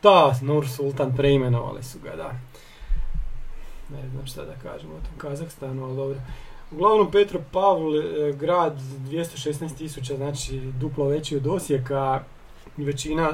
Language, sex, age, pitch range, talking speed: Croatian, male, 40-59, 135-155 Hz, 120 wpm